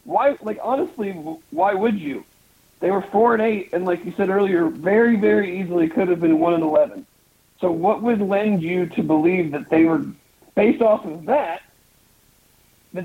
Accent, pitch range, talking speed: American, 160-210 Hz, 185 wpm